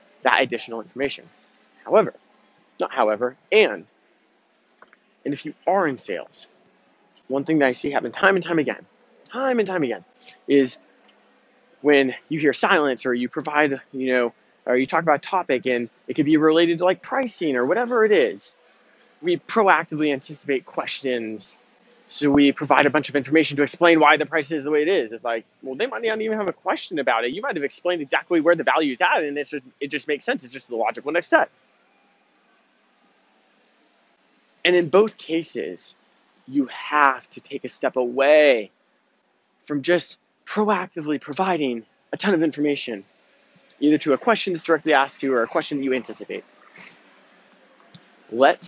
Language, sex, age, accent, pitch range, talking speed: English, male, 20-39, American, 135-175 Hz, 175 wpm